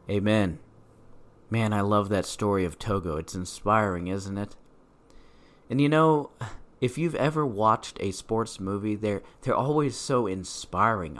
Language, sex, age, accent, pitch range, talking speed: English, male, 40-59, American, 100-130 Hz, 145 wpm